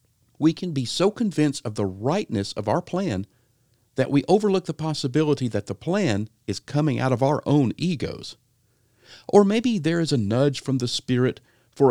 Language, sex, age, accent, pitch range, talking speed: English, male, 50-69, American, 115-150 Hz, 180 wpm